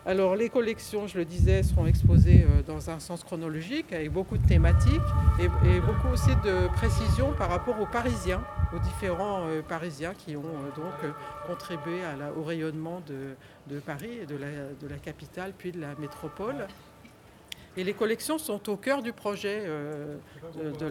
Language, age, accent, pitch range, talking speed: French, 50-69, French, 150-200 Hz, 180 wpm